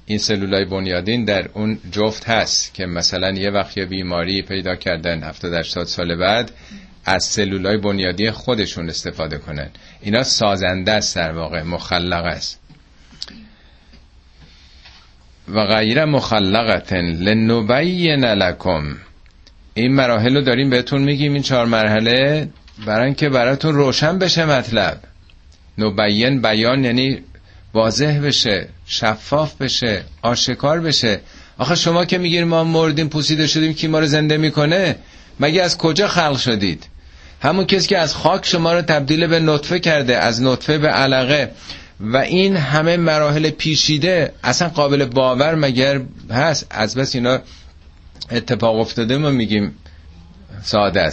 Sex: male